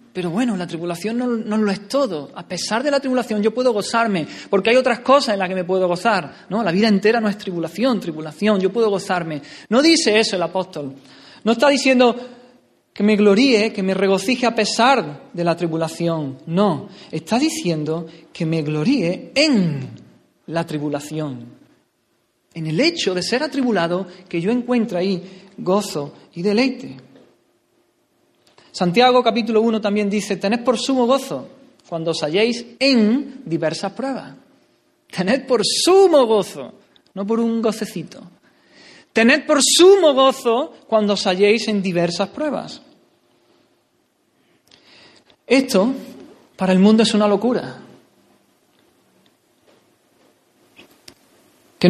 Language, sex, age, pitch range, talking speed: Spanish, male, 40-59, 185-260 Hz, 140 wpm